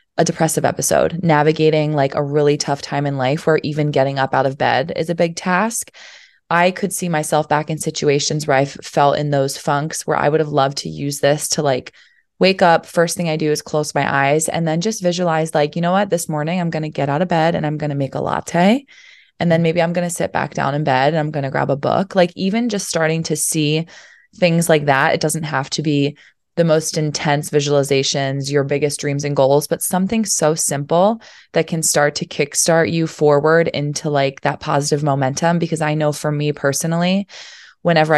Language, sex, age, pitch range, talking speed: English, female, 20-39, 145-170 Hz, 225 wpm